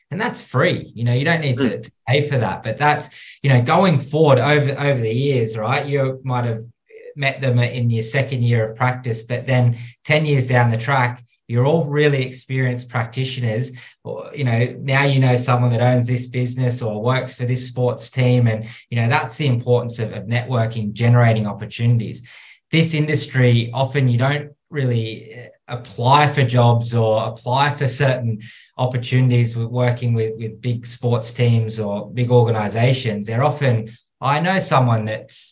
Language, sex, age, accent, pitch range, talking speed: English, male, 20-39, Australian, 115-130 Hz, 175 wpm